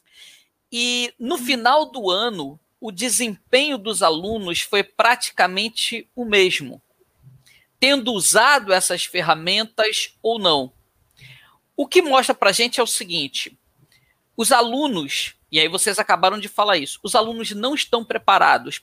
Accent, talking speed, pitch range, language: Brazilian, 135 wpm, 180-230 Hz, Portuguese